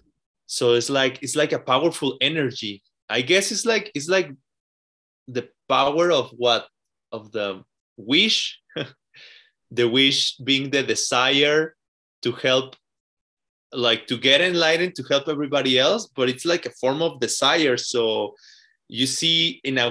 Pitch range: 125-160 Hz